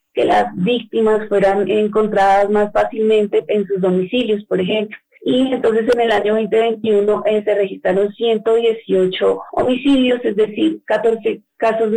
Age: 30-49